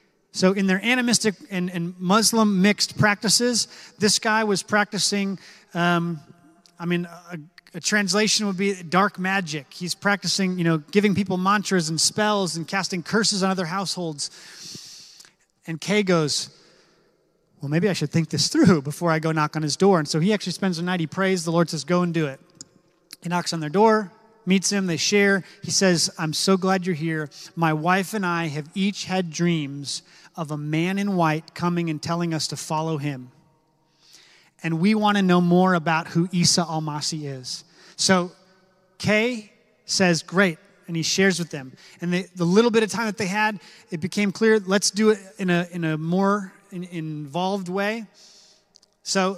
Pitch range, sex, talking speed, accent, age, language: 170-200 Hz, male, 180 wpm, American, 30-49, English